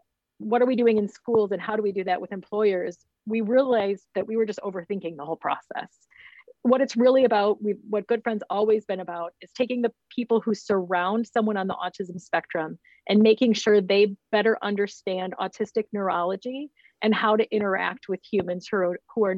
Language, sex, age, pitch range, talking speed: English, female, 40-59, 190-230 Hz, 190 wpm